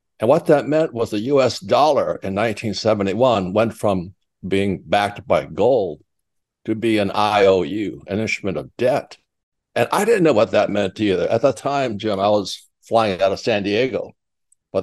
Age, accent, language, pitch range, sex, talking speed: 60-79, American, English, 100-125 Hz, male, 180 wpm